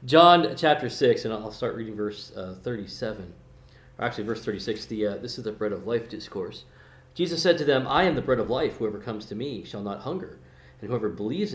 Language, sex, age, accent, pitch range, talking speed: English, male, 40-59, American, 105-135 Hz, 225 wpm